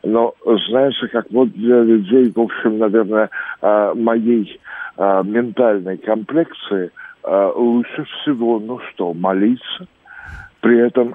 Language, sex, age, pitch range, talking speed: Russian, male, 60-79, 105-125 Hz, 100 wpm